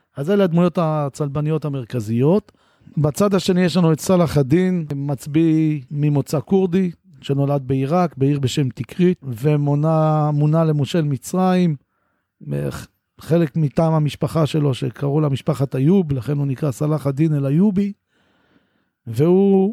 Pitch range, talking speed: 140-165 Hz, 115 wpm